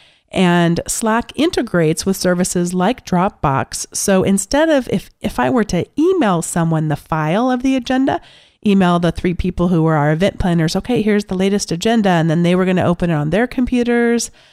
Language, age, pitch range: English, 40-59, 165-205 Hz